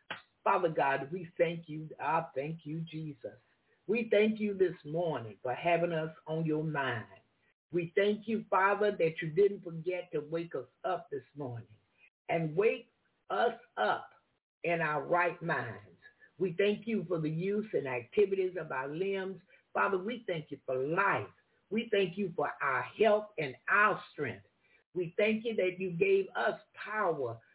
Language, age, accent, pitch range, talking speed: English, 60-79, American, 155-205 Hz, 165 wpm